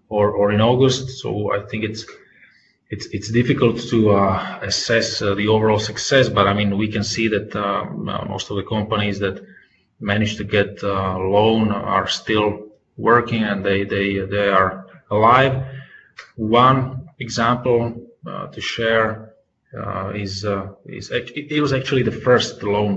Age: 20-39